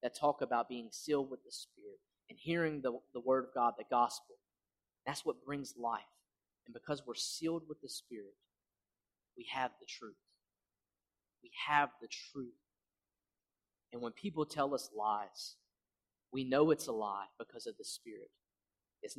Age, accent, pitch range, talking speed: 30-49, American, 120-165 Hz, 165 wpm